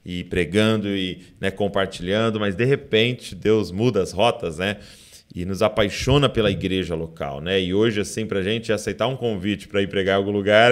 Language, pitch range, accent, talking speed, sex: Portuguese, 95-115 Hz, Brazilian, 195 wpm, male